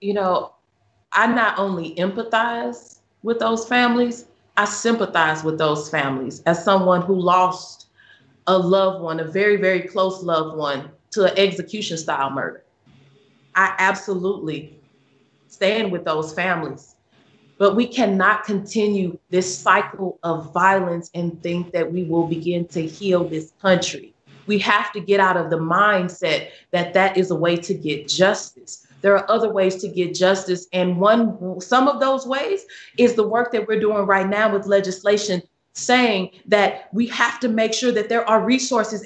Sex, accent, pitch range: female, American, 180-225 Hz